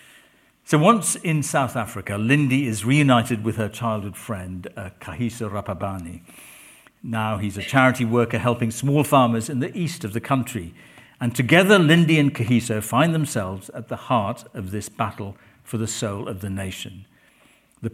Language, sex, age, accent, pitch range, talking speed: English, male, 50-69, British, 105-140 Hz, 165 wpm